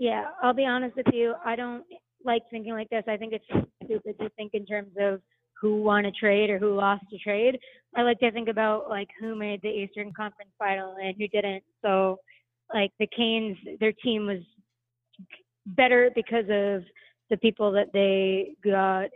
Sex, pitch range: female, 195-235 Hz